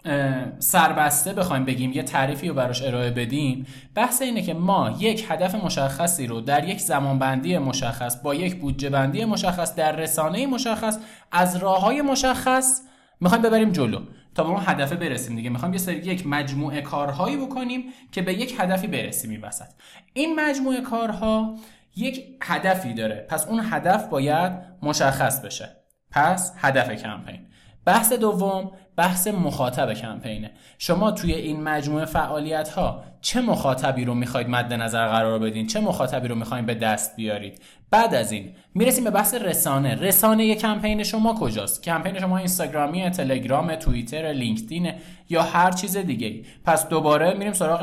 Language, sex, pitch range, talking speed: Persian, male, 135-205 Hz, 155 wpm